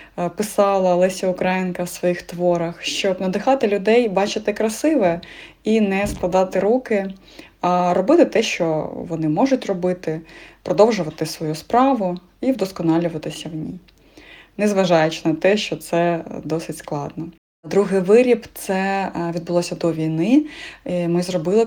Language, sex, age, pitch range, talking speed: Ukrainian, female, 20-39, 170-210 Hz, 125 wpm